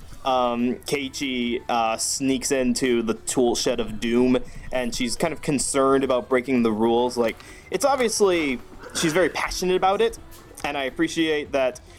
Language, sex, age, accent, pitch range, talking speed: English, male, 20-39, American, 120-165 Hz, 155 wpm